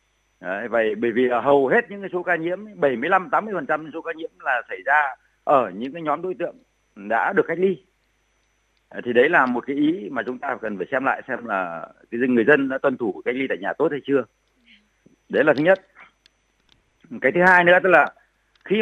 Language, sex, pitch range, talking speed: Vietnamese, male, 110-175 Hz, 215 wpm